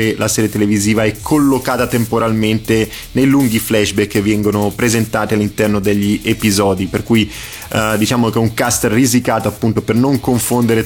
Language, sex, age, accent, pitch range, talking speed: Italian, male, 20-39, native, 105-120 Hz, 155 wpm